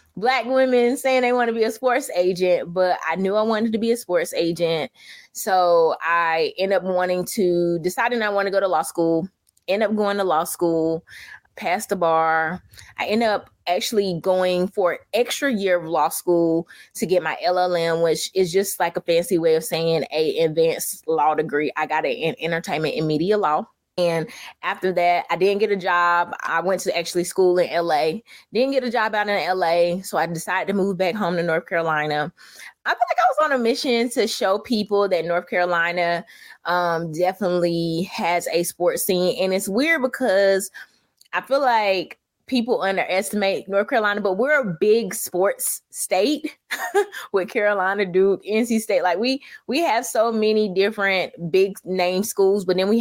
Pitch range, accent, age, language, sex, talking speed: 170-215 Hz, American, 20-39, English, female, 190 wpm